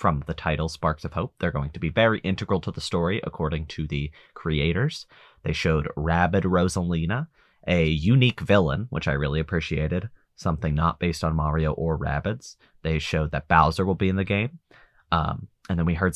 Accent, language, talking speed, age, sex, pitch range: American, English, 190 wpm, 30-49, male, 80-95 Hz